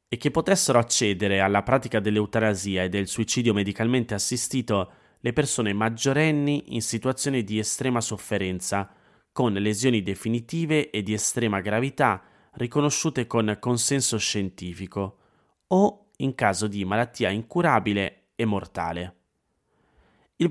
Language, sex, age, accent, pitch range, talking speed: Italian, male, 20-39, native, 100-130 Hz, 115 wpm